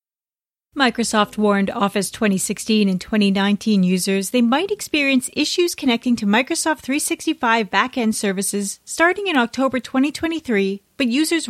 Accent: American